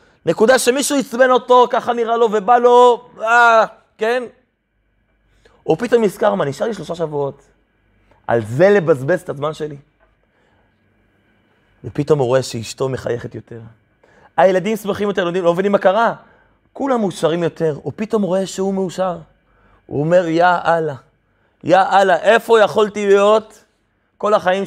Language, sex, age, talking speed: Hebrew, male, 30-49, 140 wpm